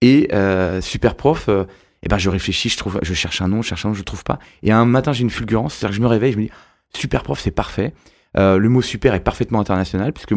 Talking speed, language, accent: 280 wpm, French, French